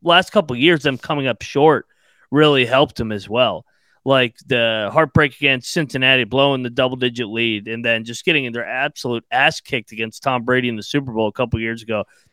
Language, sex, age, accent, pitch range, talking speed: English, male, 30-49, American, 120-150 Hz, 210 wpm